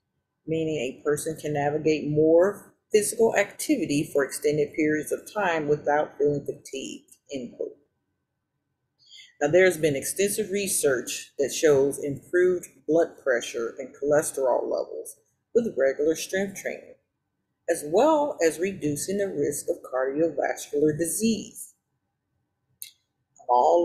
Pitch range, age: 145-190 Hz, 50-69